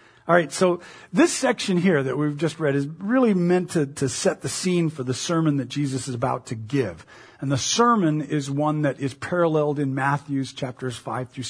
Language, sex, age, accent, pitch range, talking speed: English, male, 40-59, American, 140-195 Hz, 210 wpm